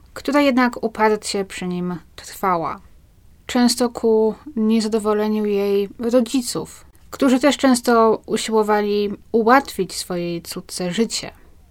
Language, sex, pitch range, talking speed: Polish, female, 185-230 Hz, 95 wpm